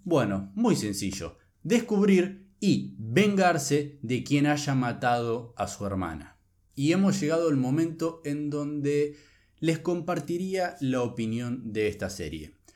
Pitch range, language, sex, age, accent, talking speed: 110-175 Hz, Spanish, male, 20-39, Argentinian, 125 wpm